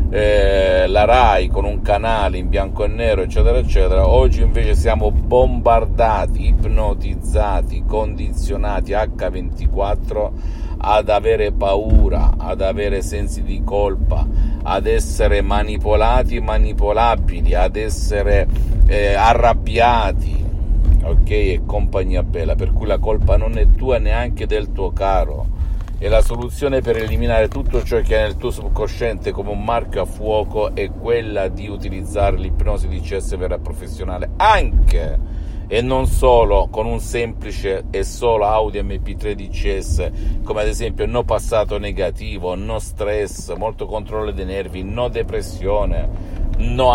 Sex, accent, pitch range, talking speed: male, native, 85-105 Hz, 130 wpm